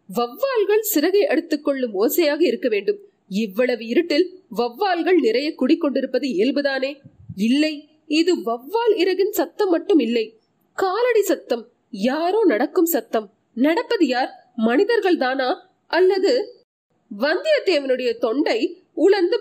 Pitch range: 270-400 Hz